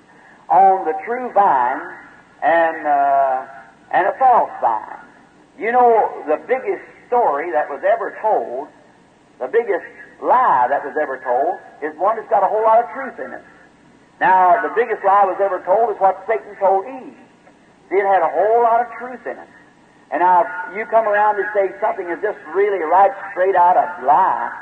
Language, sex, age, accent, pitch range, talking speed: English, male, 60-79, American, 180-230 Hz, 185 wpm